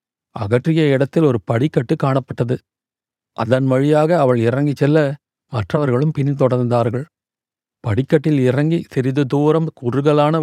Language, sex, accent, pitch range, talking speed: Tamil, male, native, 125-150 Hz, 100 wpm